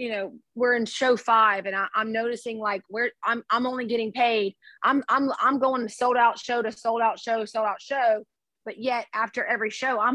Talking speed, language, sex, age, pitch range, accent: 220 wpm, English, female, 30-49, 210-255 Hz, American